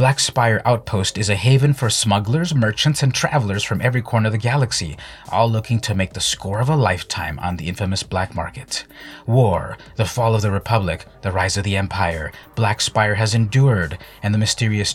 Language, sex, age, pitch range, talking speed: English, male, 30-49, 95-120 Hz, 195 wpm